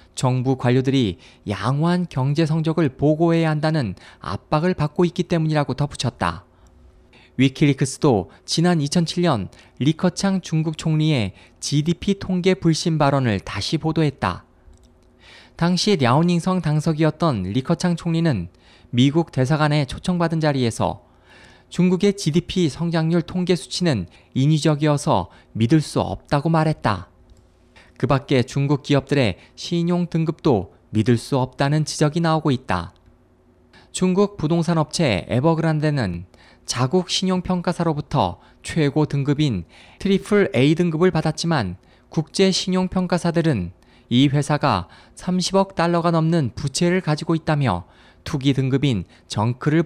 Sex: male